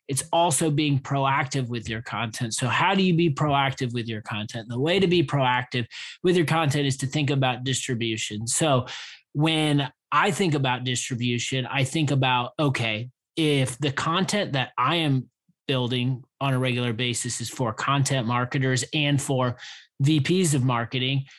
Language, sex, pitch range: English, male, 125-145 Hz